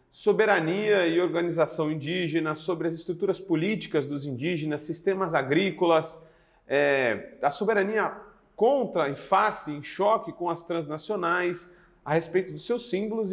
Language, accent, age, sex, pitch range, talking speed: Portuguese, Brazilian, 40-59, male, 160-210 Hz, 125 wpm